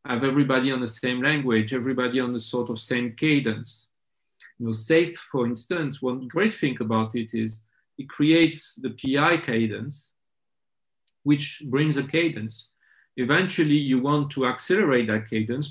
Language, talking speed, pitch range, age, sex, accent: English, 155 wpm, 120-150 Hz, 40-59, male, French